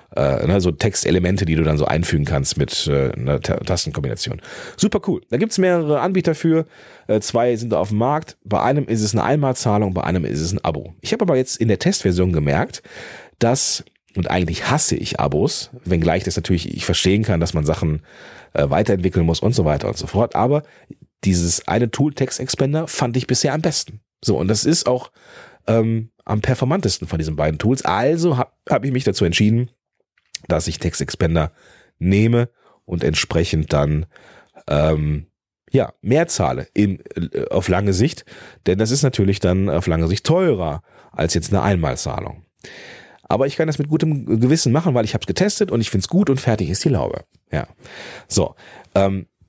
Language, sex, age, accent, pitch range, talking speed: German, male, 40-59, German, 90-130 Hz, 185 wpm